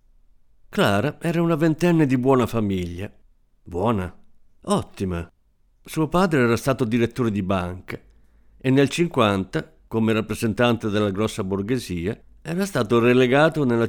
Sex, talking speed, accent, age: male, 120 wpm, native, 50-69